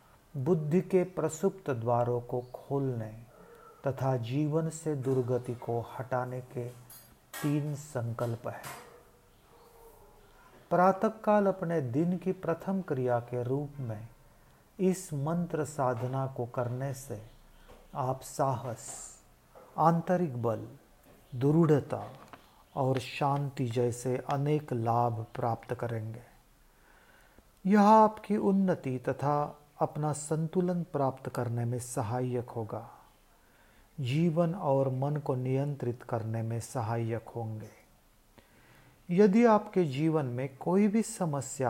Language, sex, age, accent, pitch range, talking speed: English, male, 40-59, Indian, 120-150 Hz, 100 wpm